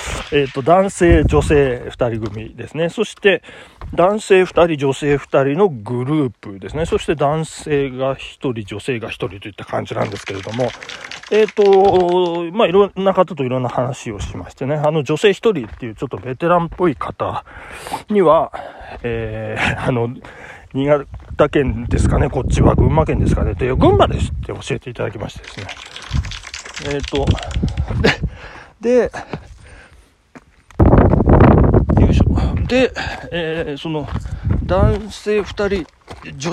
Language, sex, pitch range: Japanese, male, 115-180 Hz